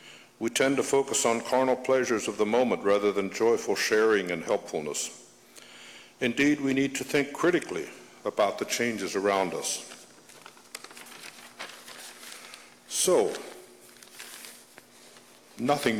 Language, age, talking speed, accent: English, 60-79, 110 wpm, American